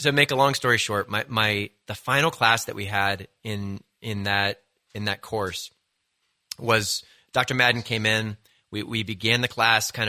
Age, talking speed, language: 30-49, 190 wpm, English